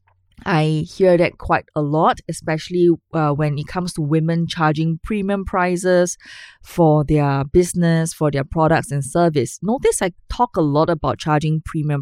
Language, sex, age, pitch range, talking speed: English, female, 20-39, 145-195 Hz, 160 wpm